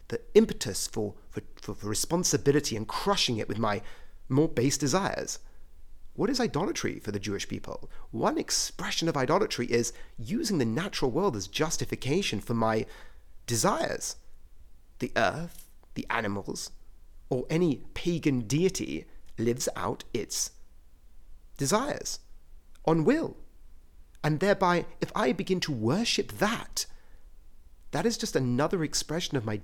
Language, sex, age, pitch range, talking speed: English, male, 40-59, 100-160 Hz, 130 wpm